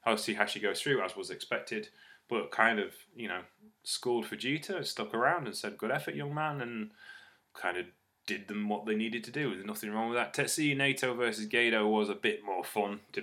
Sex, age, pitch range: male, 10-29, 100-135 Hz